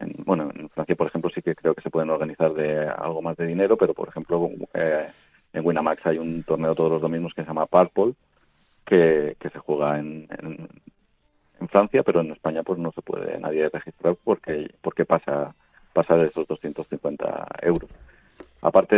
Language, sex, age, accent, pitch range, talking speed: Spanish, male, 40-59, Spanish, 80-85 Hz, 185 wpm